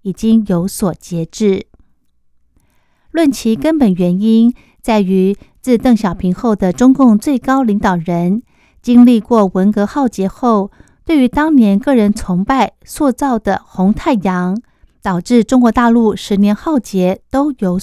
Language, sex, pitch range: Chinese, female, 190-240 Hz